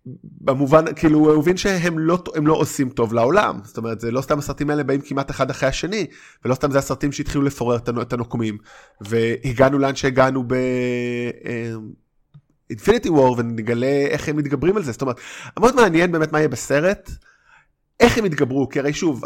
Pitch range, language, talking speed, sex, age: 125-165 Hz, Hebrew, 170 wpm, male, 20-39